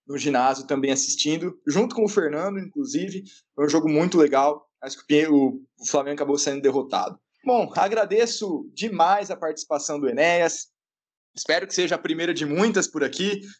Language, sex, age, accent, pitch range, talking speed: Portuguese, male, 20-39, Brazilian, 150-215 Hz, 165 wpm